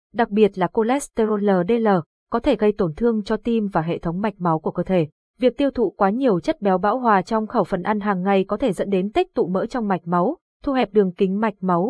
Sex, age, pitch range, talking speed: female, 20-39, 185-230 Hz, 255 wpm